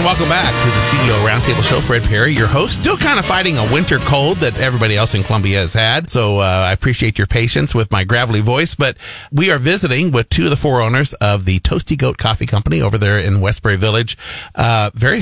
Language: English